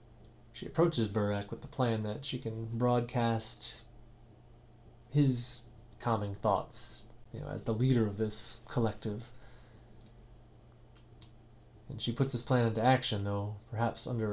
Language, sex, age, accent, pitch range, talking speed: English, male, 30-49, American, 110-120 Hz, 130 wpm